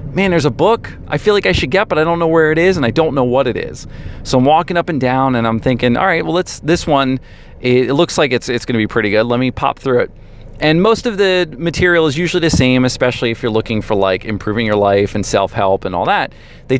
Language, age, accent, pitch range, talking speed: English, 40-59, American, 110-155 Hz, 280 wpm